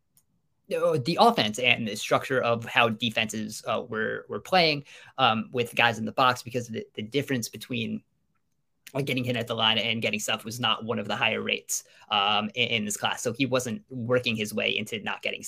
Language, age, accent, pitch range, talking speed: English, 20-39, American, 115-150 Hz, 205 wpm